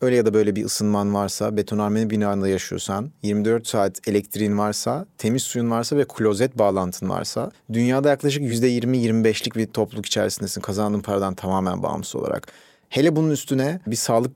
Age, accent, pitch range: 40-59, native, 115-150 Hz